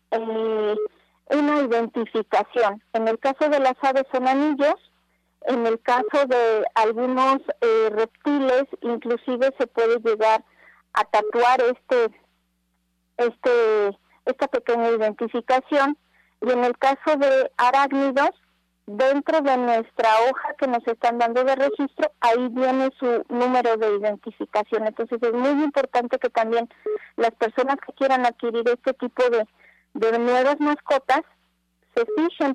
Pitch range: 230-270 Hz